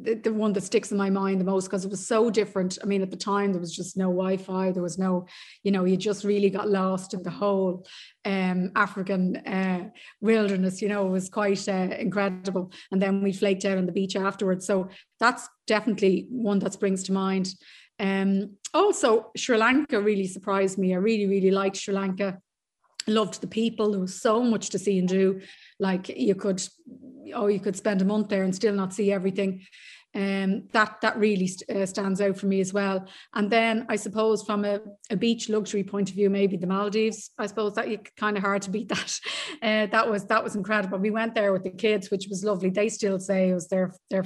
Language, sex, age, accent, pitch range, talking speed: English, female, 30-49, Irish, 190-215 Hz, 225 wpm